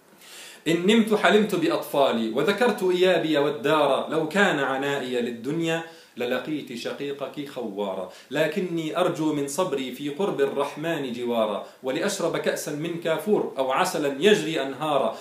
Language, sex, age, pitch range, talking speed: Arabic, male, 40-59, 140-180 Hz, 120 wpm